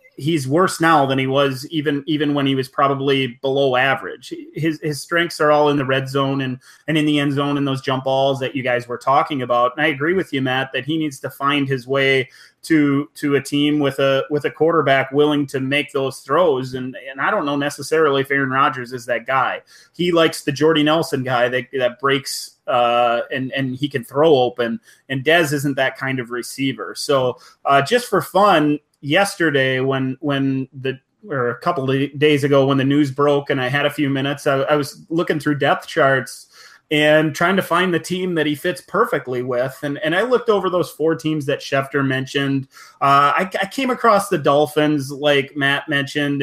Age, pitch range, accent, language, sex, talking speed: 30-49, 135-155 Hz, American, English, male, 215 wpm